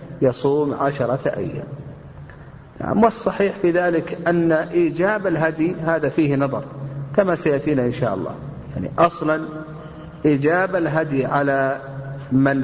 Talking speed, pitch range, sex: 115 wpm, 140-170 Hz, male